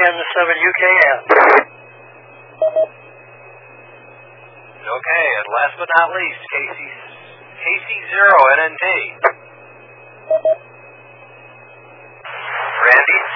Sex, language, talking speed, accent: male, English, 60 wpm, American